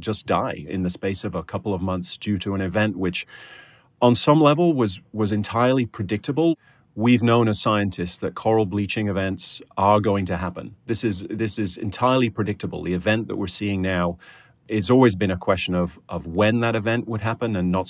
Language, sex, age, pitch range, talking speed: English, male, 30-49, 95-115 Hz, 200 wpm